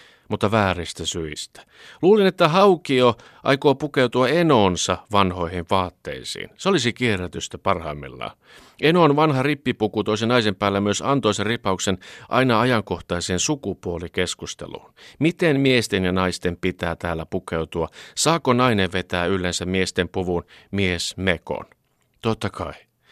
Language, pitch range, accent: Finnish, 90-120 Hz, native